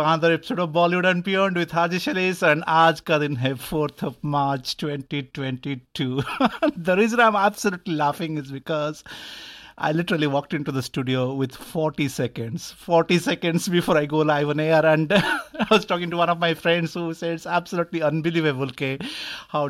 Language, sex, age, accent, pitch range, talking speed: Hindi, male, 50-69, native, 140-175 Hz, 175 wpm